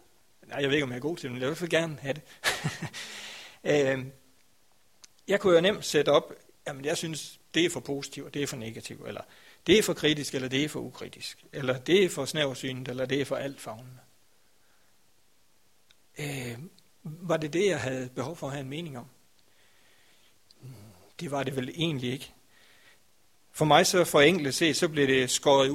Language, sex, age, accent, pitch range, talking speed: Danish, male, 60-79, native, 130-150 Hz, 195 wpm